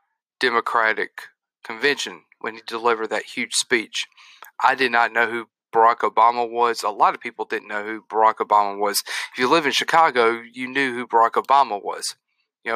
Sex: male